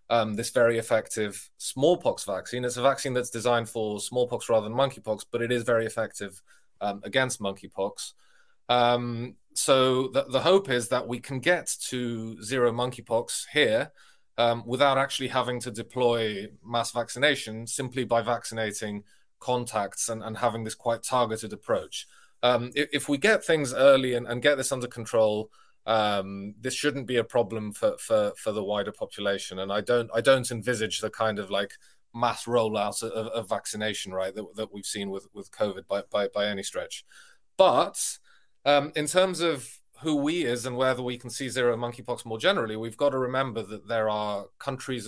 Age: 20-39